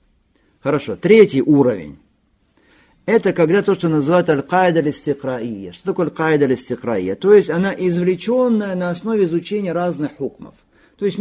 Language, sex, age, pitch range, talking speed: Russian, male, 50-69, 135-200 Hz, 140 wpm